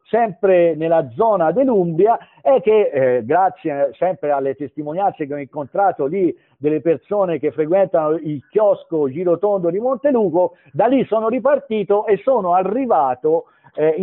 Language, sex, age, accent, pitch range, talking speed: Italian, male, 50-69, native, 160-225 Hz, 135 wpm